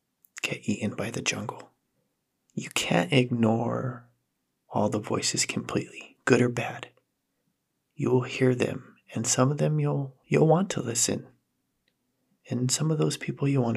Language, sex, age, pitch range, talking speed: English, male, 30-49, 115-140 Hz, 150 wpm